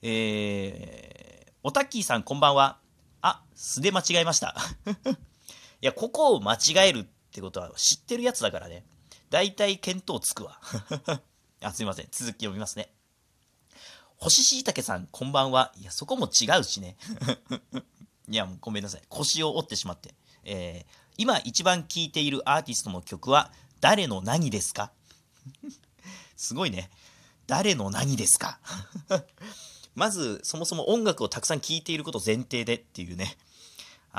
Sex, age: male, 40-59